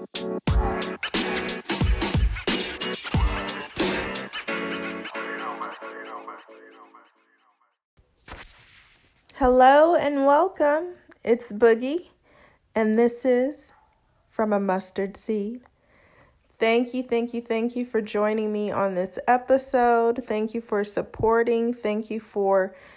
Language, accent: English, American